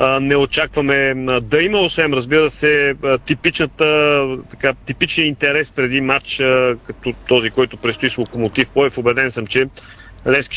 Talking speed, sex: 135 wpm, male